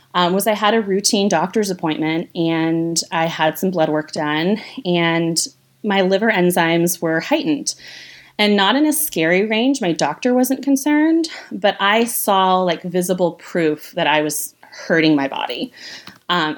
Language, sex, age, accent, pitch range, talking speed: English, female, 20-39, American, 155-205 Hz, 160 wpm